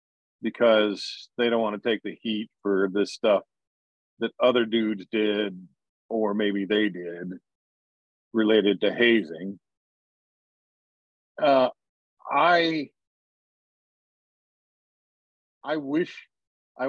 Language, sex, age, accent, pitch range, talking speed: English, male, 50-69, American, 100-135 Hz, 95 wpm